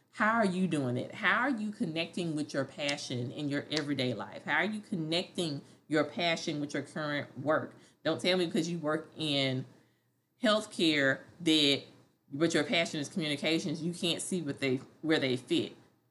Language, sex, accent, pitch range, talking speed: English, female, American, 145-190 Hz, 180 wpm